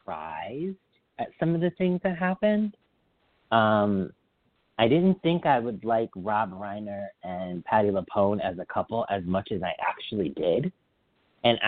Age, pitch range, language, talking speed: 30-49, 95-130 Hz, English, 150 wpm